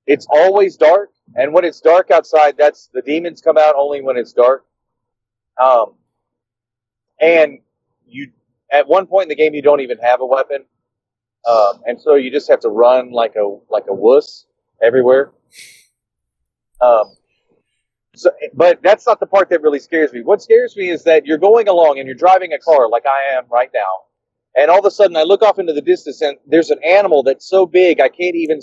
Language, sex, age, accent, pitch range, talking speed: English, male, 30-49, American, 130-195 Hz, 200 wpm